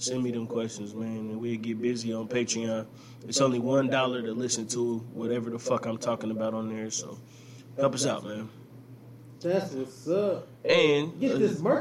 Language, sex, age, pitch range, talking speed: English, male, 20-39, 115-130 Hz, 185 wpm